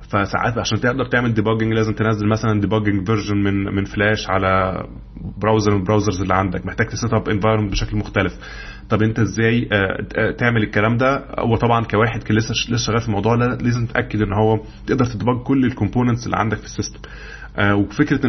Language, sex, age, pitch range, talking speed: Arabic, male, 20-39, 105-125 Hz, 165 wpm